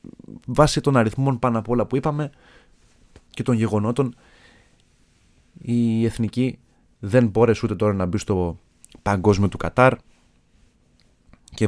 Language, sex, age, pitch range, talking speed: Greek, male, 30-49, 100-130 Hz, 125 wpm